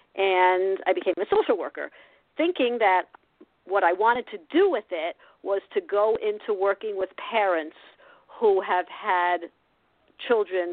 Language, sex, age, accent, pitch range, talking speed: English, female, 50-69, American, 180-280 Hz, 145 wpm